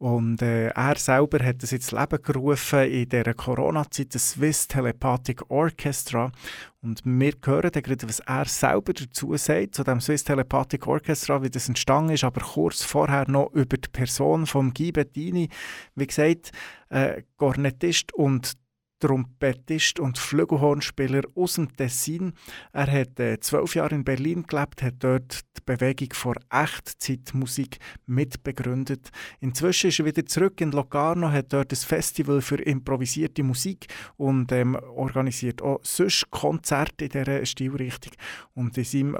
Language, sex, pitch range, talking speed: German, male, 125-145 Hz, 145 wpm